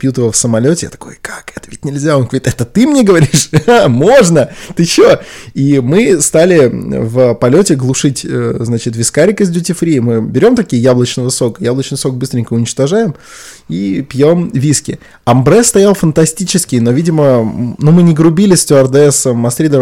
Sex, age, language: male, 20-39, Russian